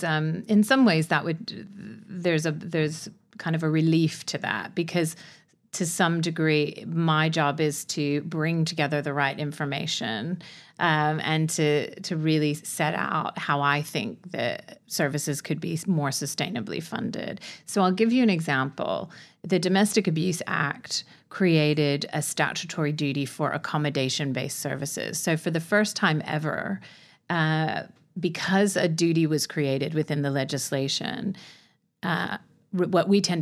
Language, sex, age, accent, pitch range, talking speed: English, female, 30-49, American, 145-170 Hz, 145 wpm